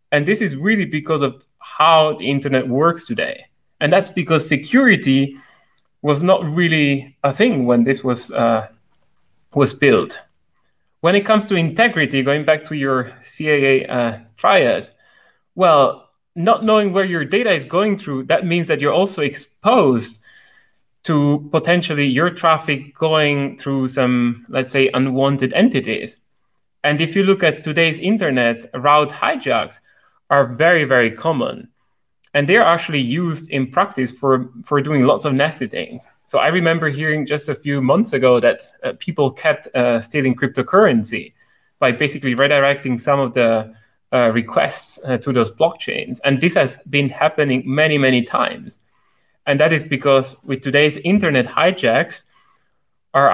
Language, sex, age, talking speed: English, male, 30-49, 150 wpm